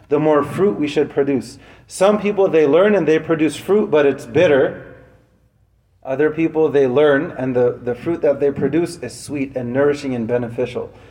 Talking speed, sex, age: 185 wpm, male, 30-49